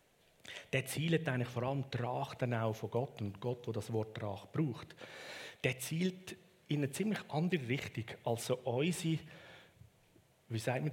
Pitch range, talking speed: 115-155 Hz, 165 wpm